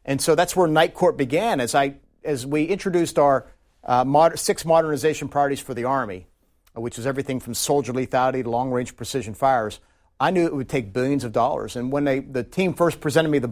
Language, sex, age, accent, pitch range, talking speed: English, male, 50-69, American, 130-160 Hz, 215 wpm